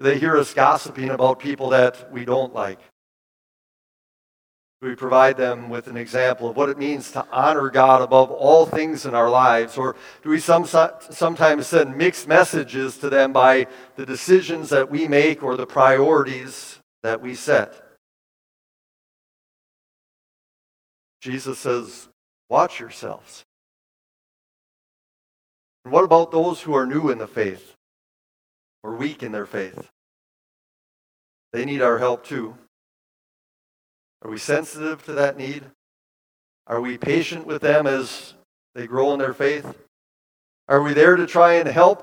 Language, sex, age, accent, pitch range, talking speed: English, male, 50-69, American, 125-155 Hz, 140 wpm